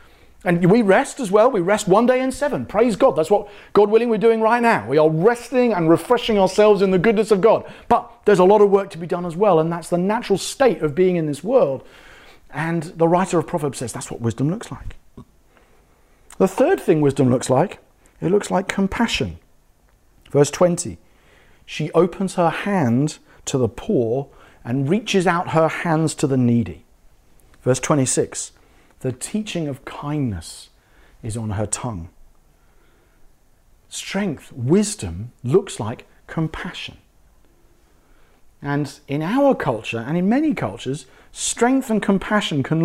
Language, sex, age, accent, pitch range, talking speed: English, male, 40-59, British, 140-210 Hz, 165 wpm